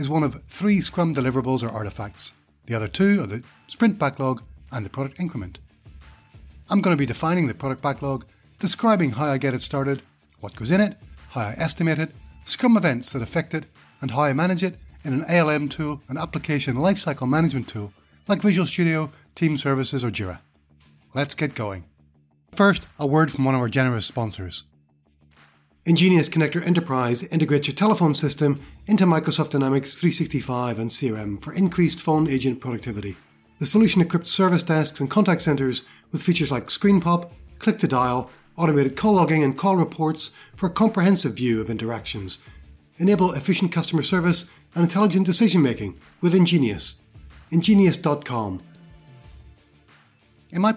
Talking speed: 160 wpm